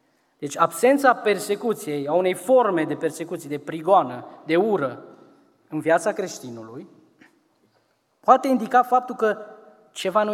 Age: 20-39